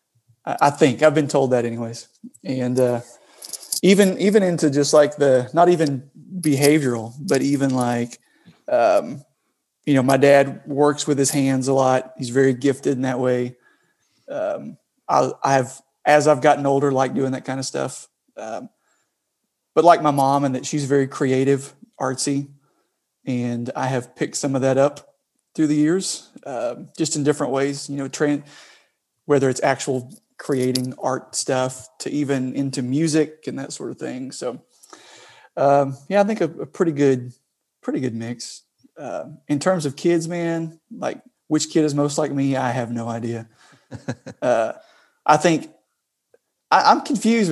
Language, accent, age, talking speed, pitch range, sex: English, American, 30-49, 165 wpm, 130-165 Hz, male